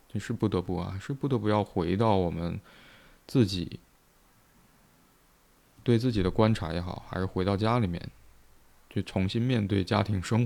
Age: 20-39